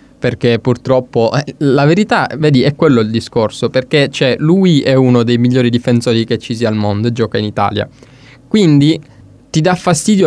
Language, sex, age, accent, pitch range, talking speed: Italian, male, 20-39, native, 115-140 Hz, 170 wpm